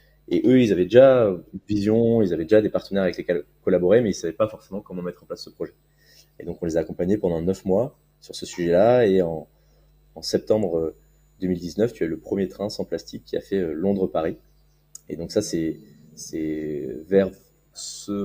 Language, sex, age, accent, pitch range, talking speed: French, male, 20-39, French, 85-110 Hz, 205 wpm